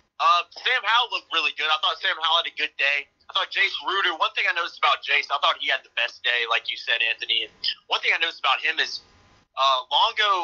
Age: 30-49